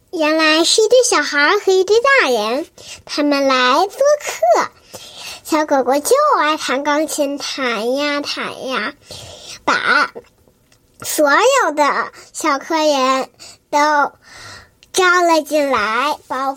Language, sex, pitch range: Chinese, male, 275-340 Hz